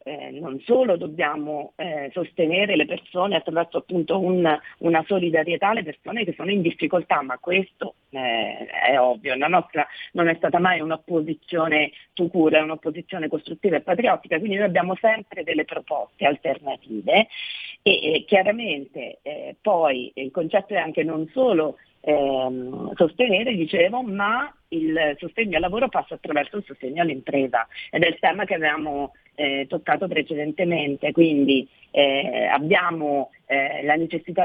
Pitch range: 155-205 Hz